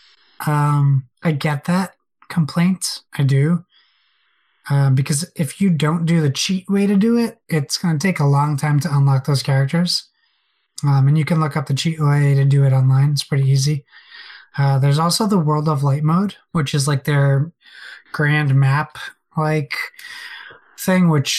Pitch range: 140-165 Hz